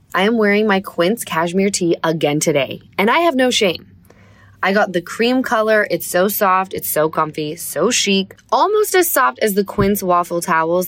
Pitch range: 170-260 Hz